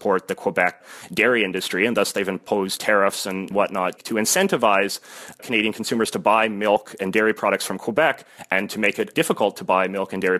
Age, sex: 30-49, male